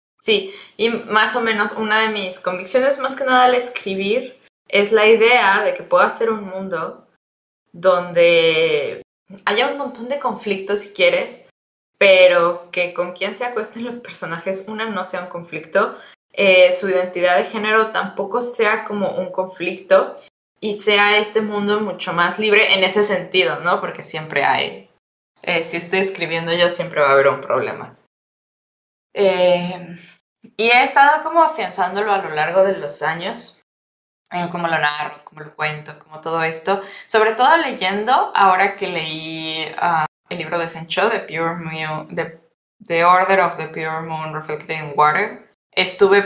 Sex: female